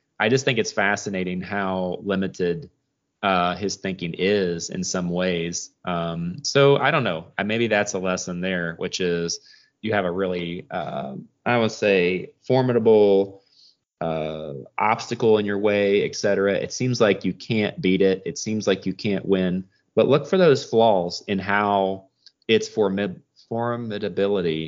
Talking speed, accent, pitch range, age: 155 wpm, American, 90-110 Hz, 20-39